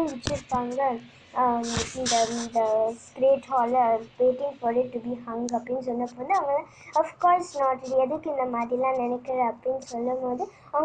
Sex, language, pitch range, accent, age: male, Tamil, 250-290 Hz, native, 20-39